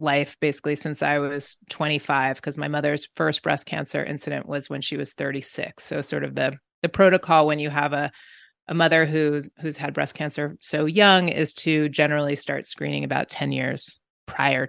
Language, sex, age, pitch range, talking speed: English, female, 30-49, 150-170 Hz, 190 wpm